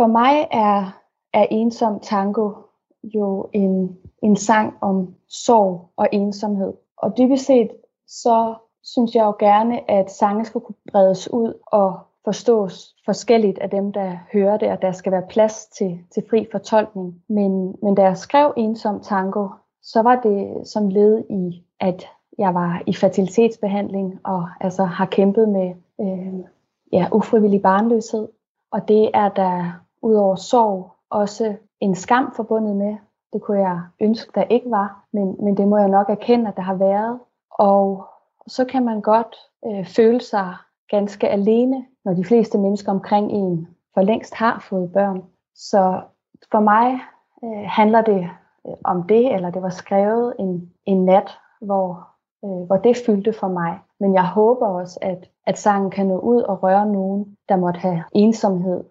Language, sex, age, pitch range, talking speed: Danish, female, 30-49, 190-220 Hz, 165 wpm